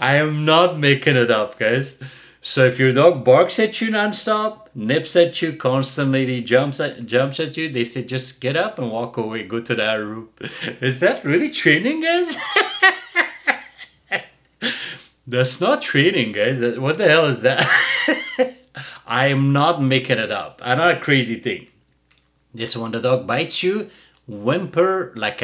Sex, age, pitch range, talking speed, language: male, 30-49, 120-160 Hz, 160 wpm, English